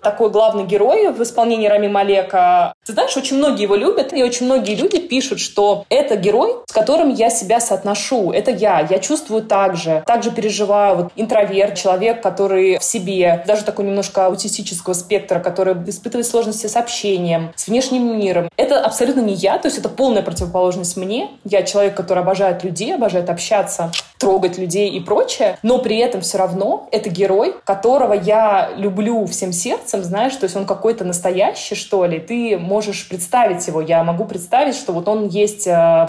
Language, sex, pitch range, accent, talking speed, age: Russian, female, 185-220 Hz, native, 175 wpm, 20-39